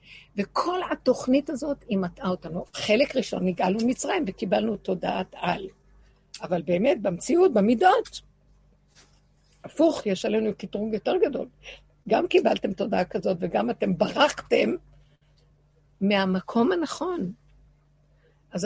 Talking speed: 105 wpm